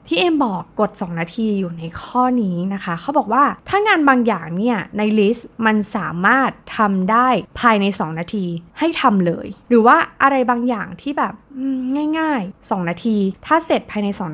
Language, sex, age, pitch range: Thai, female, 20-39, 185-260 Hz